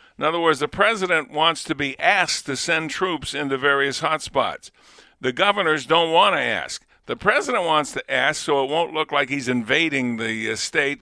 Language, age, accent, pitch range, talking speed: English, 50-69, American, 130-160 Hz, 190 wpm